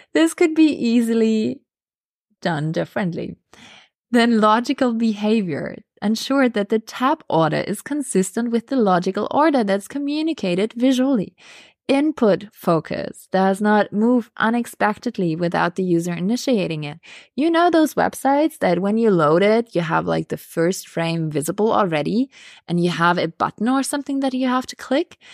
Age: 20-39